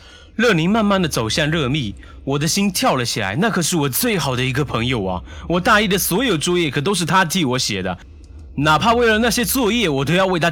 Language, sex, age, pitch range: Chinese, male, 30-49, 125-195 Hz